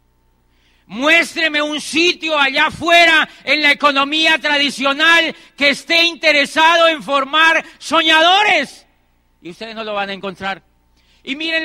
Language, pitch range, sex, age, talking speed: Spanish, 225-295 Hz, male, 40-59, 125 wpm